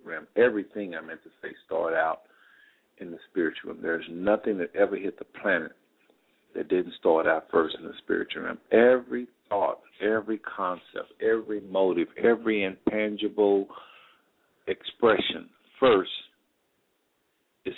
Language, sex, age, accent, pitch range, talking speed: English, male, 50-69, American, 90-125 Hz, 130 wpm